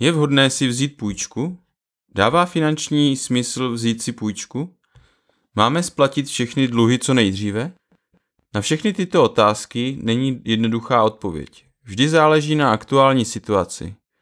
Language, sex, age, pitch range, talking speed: Czech, male, 30-49, 105-135 Hz, 120 wpm